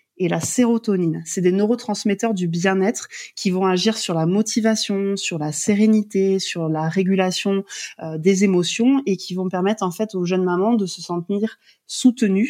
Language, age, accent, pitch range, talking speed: French, 20-39, French, 175-210 Hz, 175 wpm